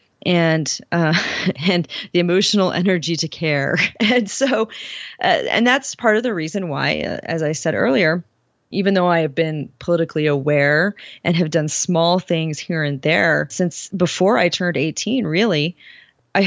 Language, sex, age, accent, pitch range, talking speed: English, female, 30-49, American, 155-200 Hz, 165 wpm